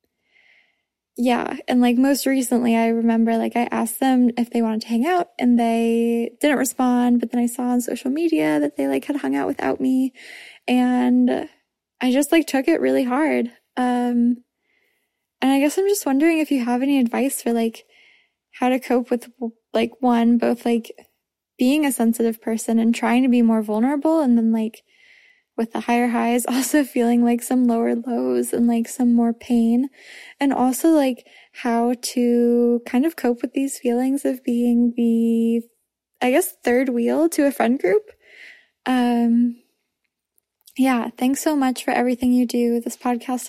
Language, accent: English, American